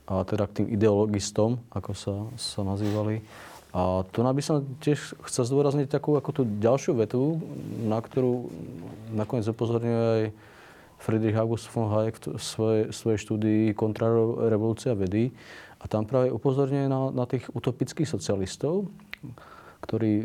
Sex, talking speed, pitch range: male, 140 wpm, 105-125 Hz